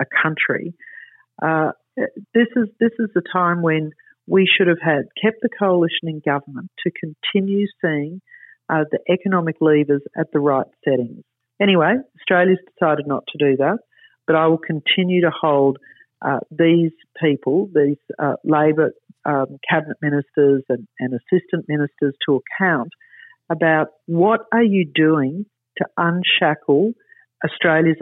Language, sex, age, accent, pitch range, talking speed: English, female, 50-69, Australian, 140-180 Hz, 140 wpm